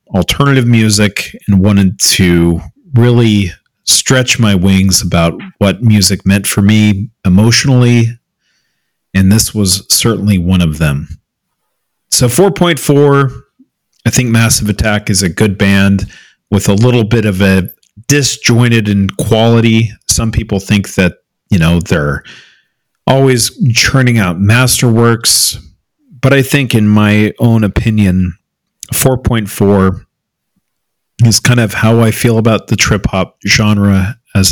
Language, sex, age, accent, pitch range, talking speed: English, male, 40-59, American, 95-120 Hz, 125 wpm